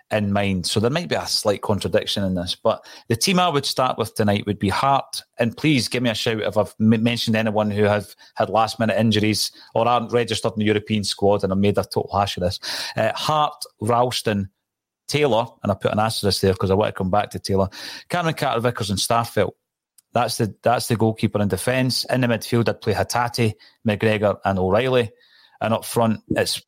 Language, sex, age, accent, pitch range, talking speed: English, male, 30-49, British, 105-120 Hz, 215 wpm